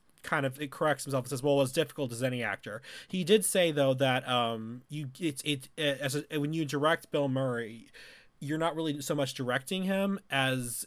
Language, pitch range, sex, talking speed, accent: English, 125-155 Hz, male, 210 wpm, American